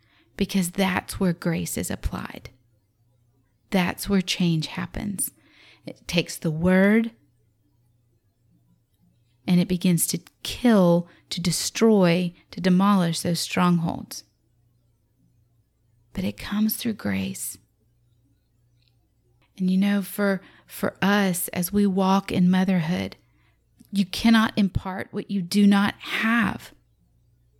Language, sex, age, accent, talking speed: English, female, 30-49, American, 105 wpm